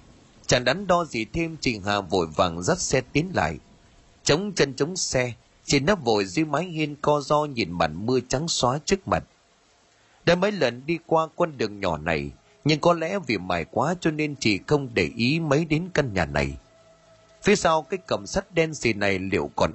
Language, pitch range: Vietnamese, 105-165 Hz